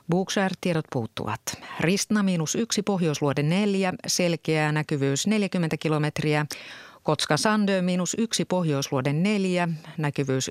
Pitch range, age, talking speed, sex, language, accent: 145-190 Hz, 30-49, 85 wpm, female, Finnish, native